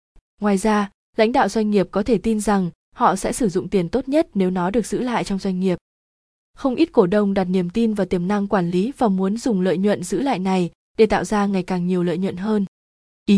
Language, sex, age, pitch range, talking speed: Vietnamese, female, 20-39, 185-225 Hz, 245 wpm